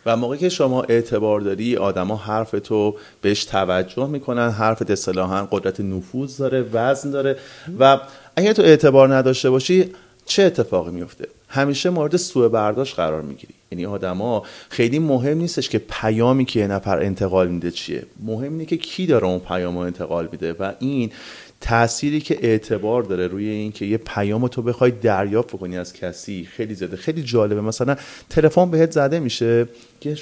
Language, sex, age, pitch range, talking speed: Persian, male, 30-49, 100-130 Hz, 170 wpm